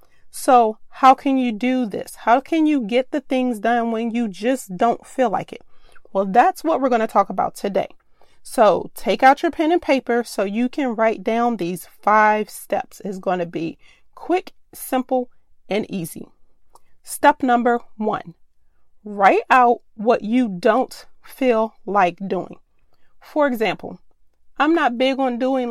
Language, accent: English, American